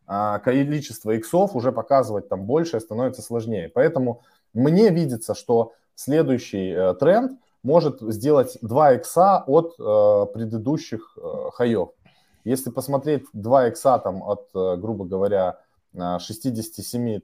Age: 20-39